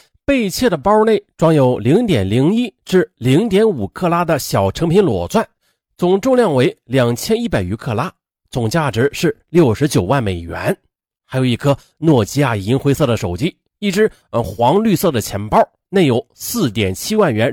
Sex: male